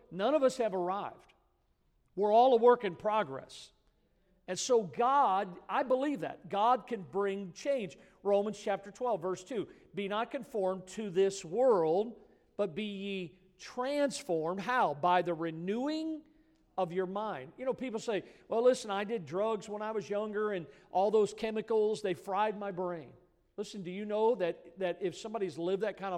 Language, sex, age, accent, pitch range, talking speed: English, male, 50-69, American, 180-225 Hz, 170 wpm